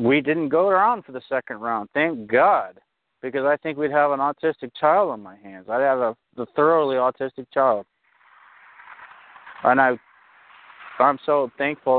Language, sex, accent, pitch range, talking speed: English, male, American, 115-150 Hz, 160 wpm